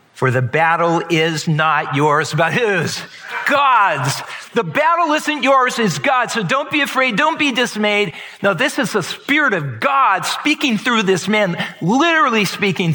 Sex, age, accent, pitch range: male, 50-69, American, 160-205 Hz